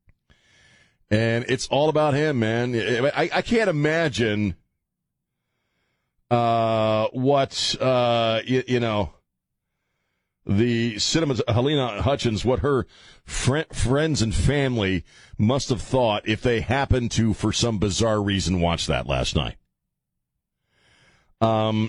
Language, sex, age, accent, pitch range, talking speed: English, male, 40-59, American, 105-135 Hz, 115 wpm